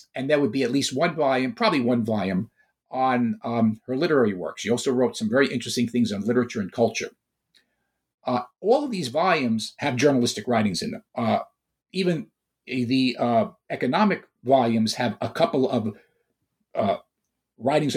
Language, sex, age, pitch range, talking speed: English, male, 50-69, 115-150 Hz, 165 wpm